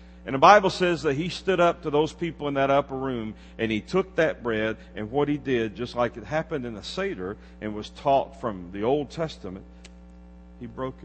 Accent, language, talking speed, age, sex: American, English, 215 wpm, 50-69, male